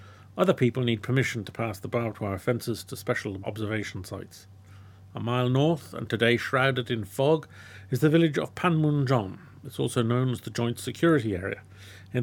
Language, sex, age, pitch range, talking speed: English, male, 50-69, 100-135 Hz, 175 wpm